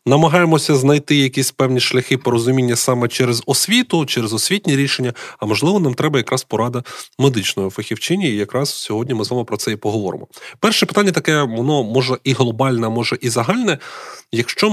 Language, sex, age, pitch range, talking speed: Ukrainian, male, 30-49, 115-150 Hz, 165 wpm